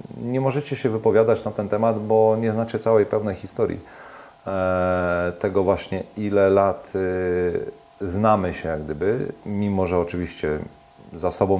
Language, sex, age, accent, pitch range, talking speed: Polish, male, 40-59, native, 85-110 Hz, 135 wpm